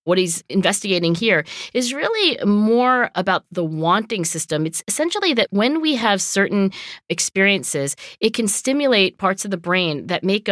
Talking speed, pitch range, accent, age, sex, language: 160 wpm, 170-245 Hz, American, 40-59, female, English